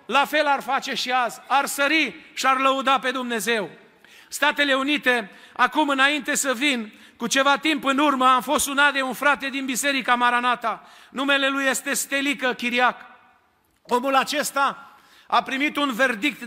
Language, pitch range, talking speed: Romanian, 245-285 Hz, 160 wpm